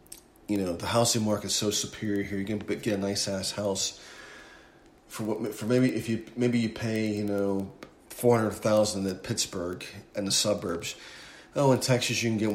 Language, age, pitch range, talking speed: English, 40-59, 100-115 Hz, 195 wpm